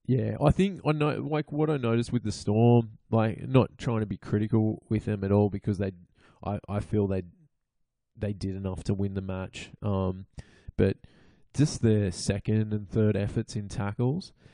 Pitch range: 100-115 Hz